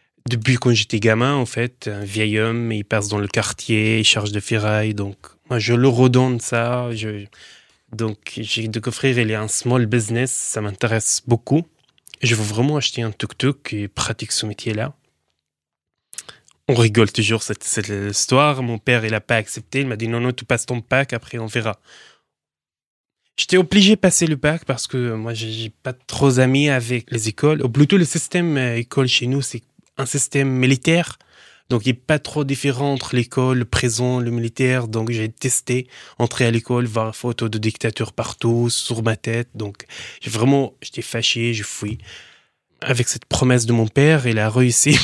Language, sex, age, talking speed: French, male, 20-39, 190 wpm